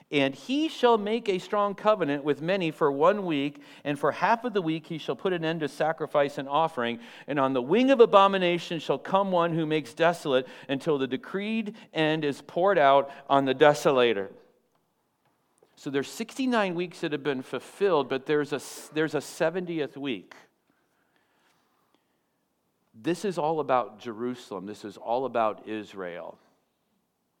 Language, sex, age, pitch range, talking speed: English, male, 50-69, 130-180 Hz, 160 wpm